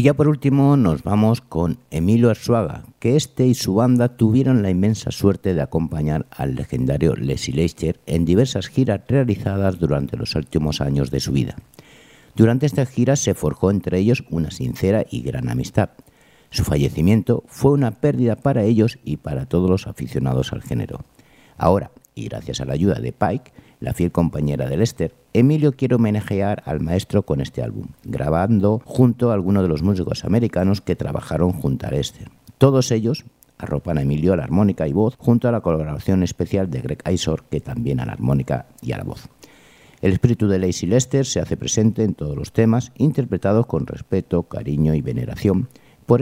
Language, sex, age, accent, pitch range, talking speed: Spanish, male, 60-79, Spanish, 80-120 Hz, 185 wpm